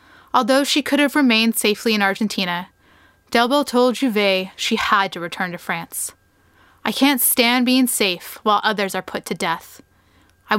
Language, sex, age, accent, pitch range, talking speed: English, female, 20-39, American, 175-235 Hz, 165 wpm